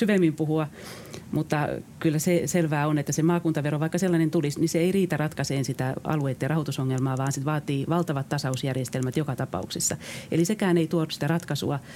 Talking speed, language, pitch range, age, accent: 170 wpm, Finnish, 135-165 Hz, 40-59, native